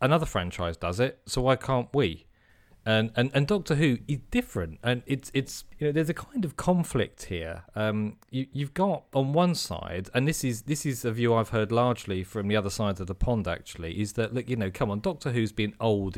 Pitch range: 95-120 Hz